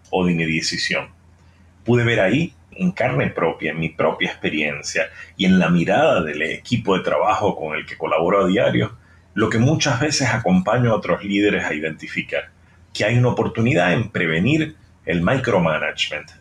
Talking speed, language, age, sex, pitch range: 170 wpm, English, 40-59, male, 95-125 Hz